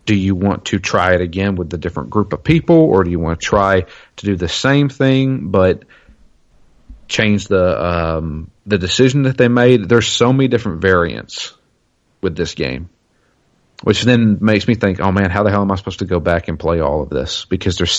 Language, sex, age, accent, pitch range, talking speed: English, male, 40-59, American, 90-110 Hz, 210 wpm